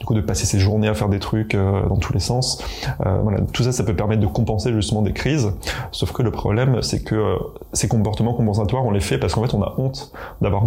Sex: male